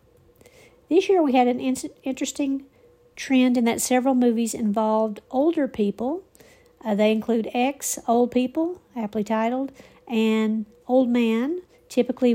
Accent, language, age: American, English, 50-69